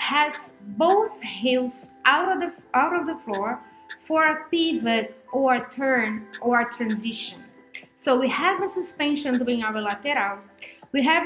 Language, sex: English, female